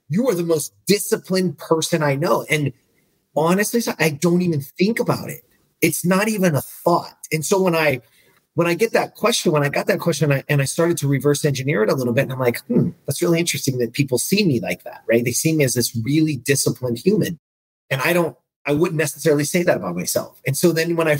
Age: 30-49